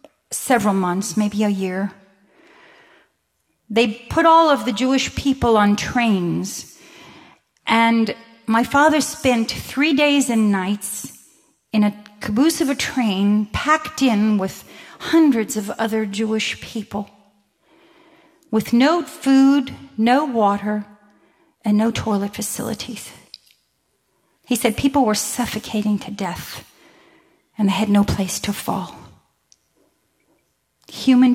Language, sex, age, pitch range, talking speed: English, female, 40-59, 200-265 Hz, 115 wpm